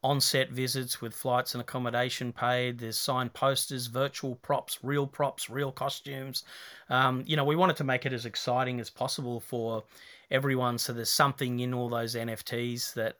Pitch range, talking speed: 120-135 Hz, 175 wpm